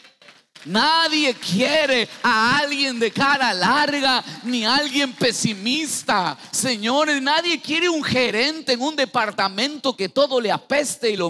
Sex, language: male, Spanish